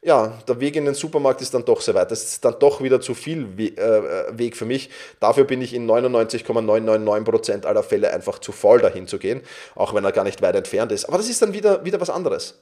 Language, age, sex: German, 30-49, male